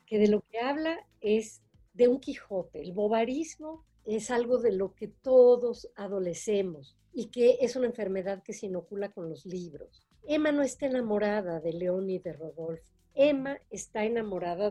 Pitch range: 180-245 Hz